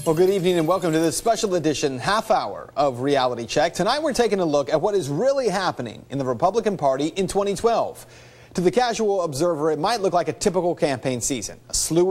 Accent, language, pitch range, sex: American, English, 145-205 Hz, male